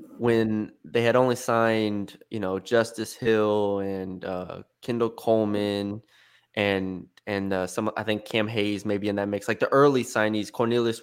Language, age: English, 20-39